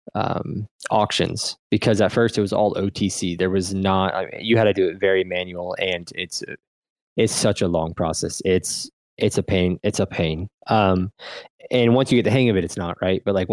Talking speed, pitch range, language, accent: 215 wpm, 90-110 Hz, English, American